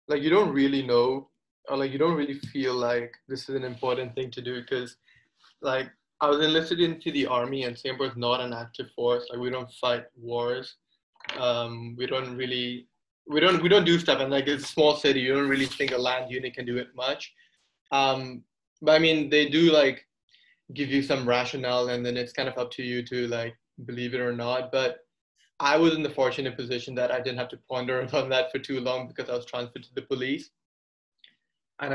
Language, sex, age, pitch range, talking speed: English, male, 20-39, 125-140 Hz, 220 wpm